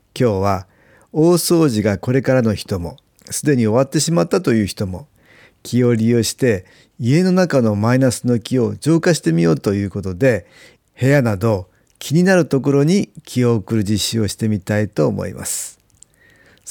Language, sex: Japanese, male